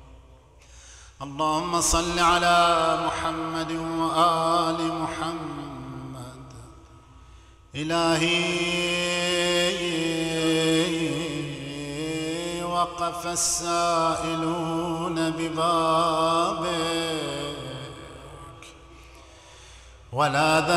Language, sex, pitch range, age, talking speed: Arabic, male, 145-170 Hz, 50-69, 35 wpm